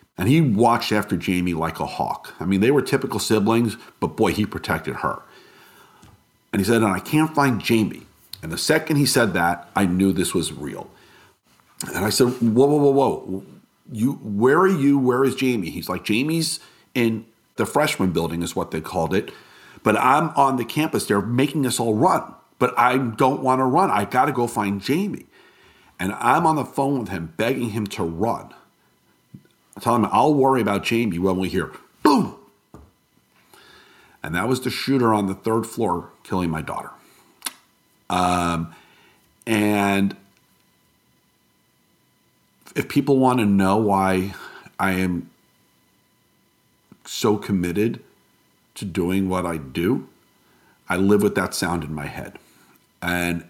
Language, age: English, 50-69